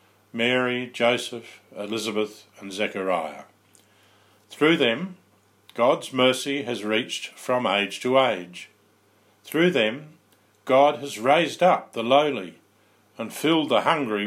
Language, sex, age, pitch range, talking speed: English, male, 50-69, 105-135 Hz, 115 wpm